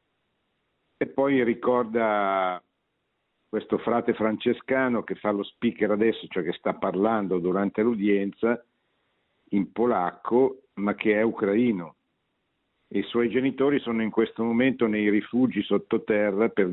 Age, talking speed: 50-69, 125 wpm